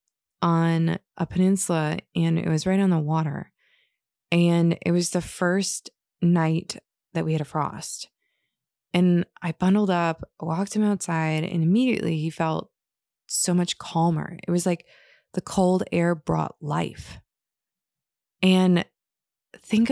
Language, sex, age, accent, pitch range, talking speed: English, female, 20-39, American, 165-195 Hz, 135 wpm